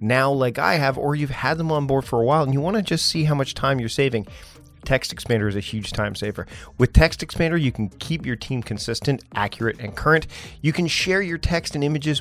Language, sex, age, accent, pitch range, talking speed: English, male, 40-59, American, 115-145 Hz, 245 wpm